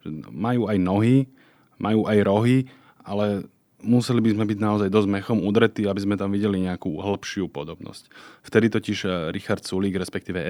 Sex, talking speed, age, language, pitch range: male, 155 wpm, 30-49, Slovak, 95-110 Hz